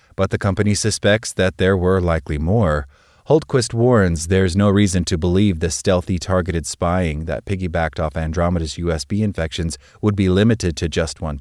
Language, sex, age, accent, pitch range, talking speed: English, male, 30-49, American, 85-105 Hz, 170 wpm